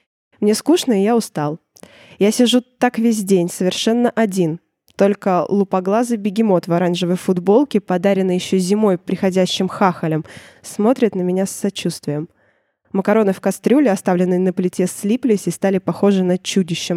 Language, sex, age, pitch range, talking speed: Russian, female, 20-39, 180-220 Hz, 140 wpm